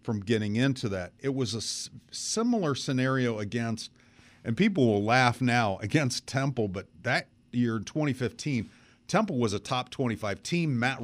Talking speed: 160 wpm